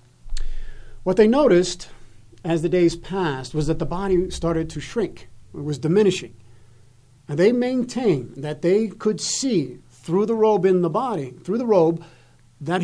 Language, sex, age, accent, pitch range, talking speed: English, male, 50-69, American, 125-185 Hz, 160 wpm